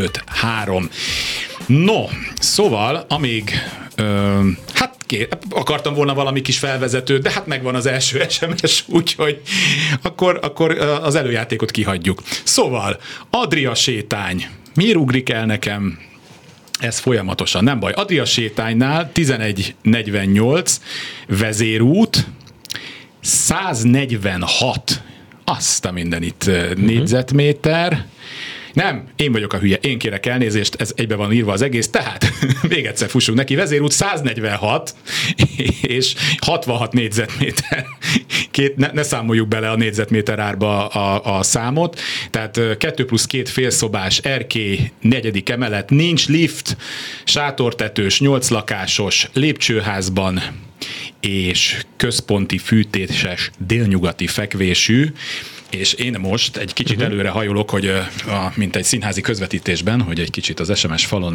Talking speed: 115 wpm